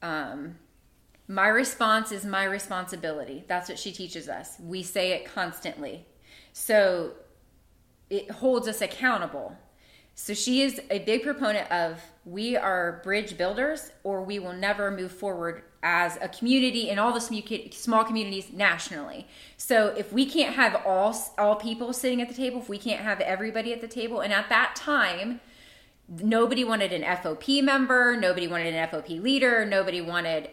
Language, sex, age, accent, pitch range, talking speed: English, female, 20-39, American, 190-260 Hz, 160 wpm